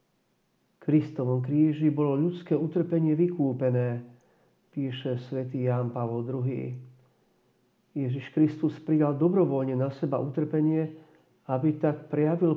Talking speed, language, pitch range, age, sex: 100 wpm, Slovak, 125-150 Hz, 50-69, male